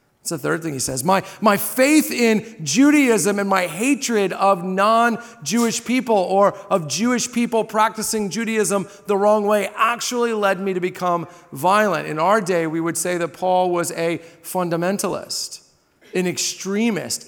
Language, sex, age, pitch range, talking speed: English, male, 40-59, 175-230 Hz, 155 wpm